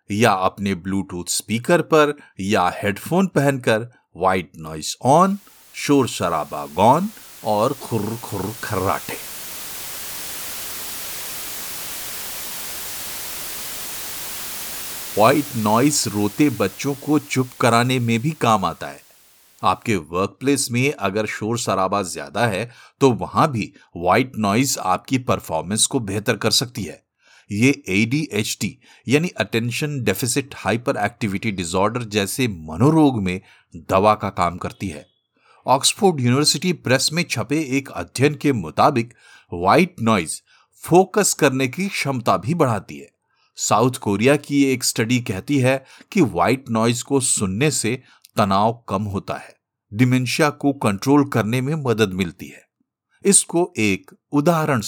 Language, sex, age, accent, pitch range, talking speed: Hindi, male, 50-69, native, 105-145 Hz, 110 wpm